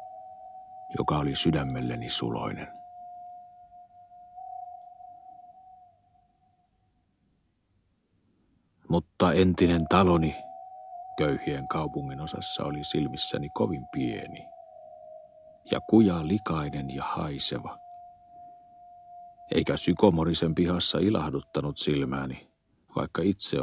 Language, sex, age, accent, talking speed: Finnish, male, 50-69, native, 65 wpm